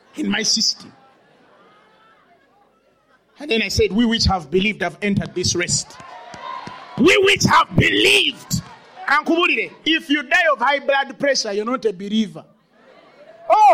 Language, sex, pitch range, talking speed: English, male, 215-360 Hz, 140 wpm